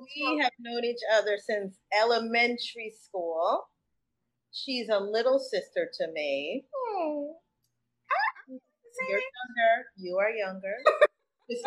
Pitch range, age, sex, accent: 185-275 Hz, 30-49, female, American